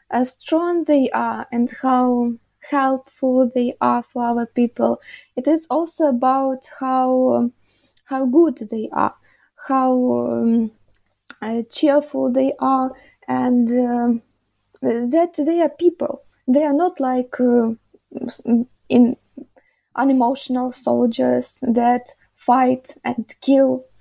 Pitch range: 230-265 Hz